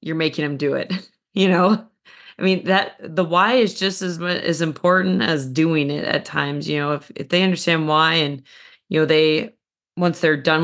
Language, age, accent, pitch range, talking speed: English, 30-49, American, 150-180 Hz, 205 wpm